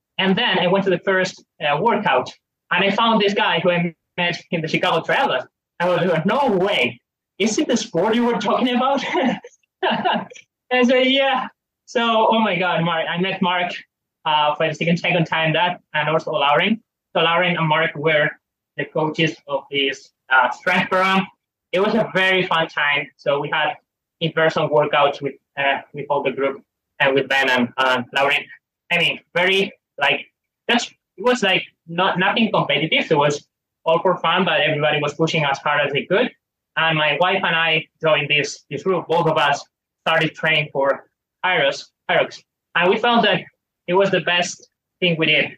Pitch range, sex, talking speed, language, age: 150-190 Hz, male, 190 wpm, English, 20-39